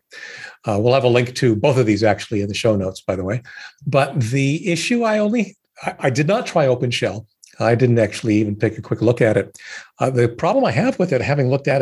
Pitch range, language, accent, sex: 105-130 Hz, English, American, male